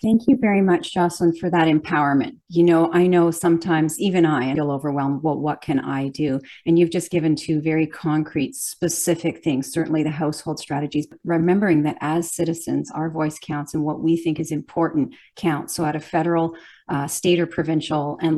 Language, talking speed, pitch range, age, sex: English, 195 wpm, 150-170 Hz, 40-59, female